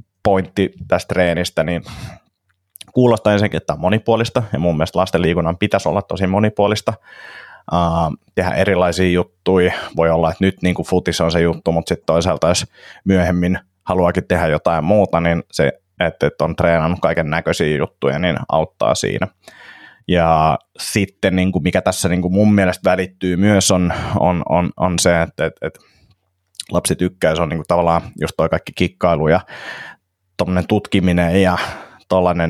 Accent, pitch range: native, 85-95 Hz